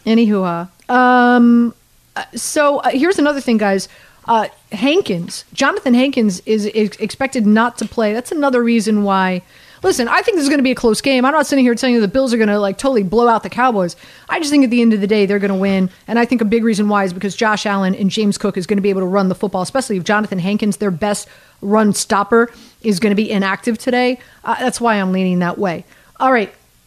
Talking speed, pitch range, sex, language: 245 wpm, 210-265 Hz, female, English